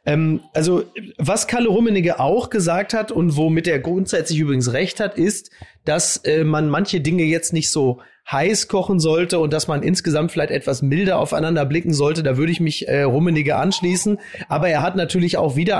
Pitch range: 150-180 Hz